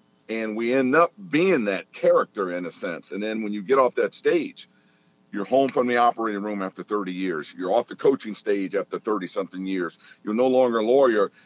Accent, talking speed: American, 210 wpm